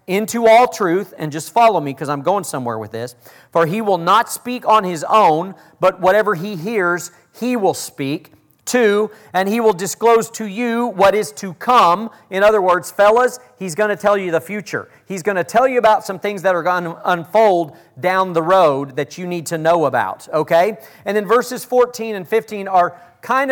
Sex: male